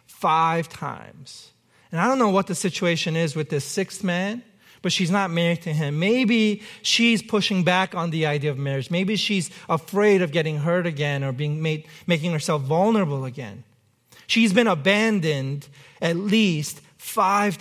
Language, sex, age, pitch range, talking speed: English, male, 40-59, 155-210 Hz, 165 wpm